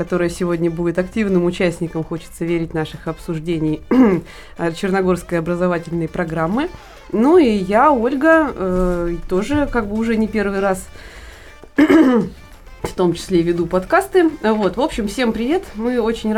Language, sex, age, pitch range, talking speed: Russian, female, 20-39, 180-255 Hz, 130 wpm